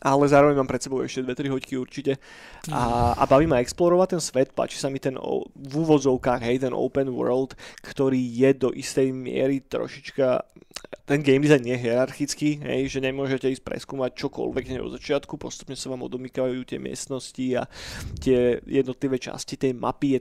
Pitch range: 125-140 Hz